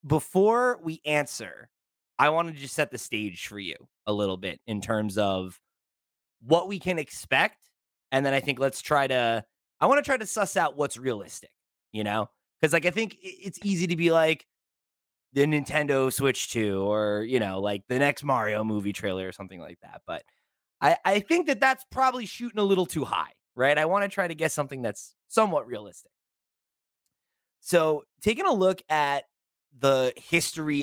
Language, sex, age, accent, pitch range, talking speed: English, male, 20-39, American, 115-170 Hz, 185 wpm